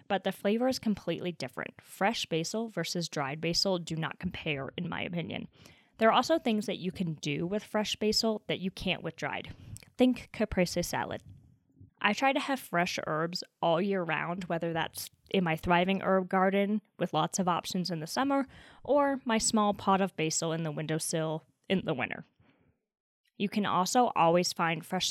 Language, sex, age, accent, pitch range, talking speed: English, female, 10-29, American, 165-210 Hz, 185 wpm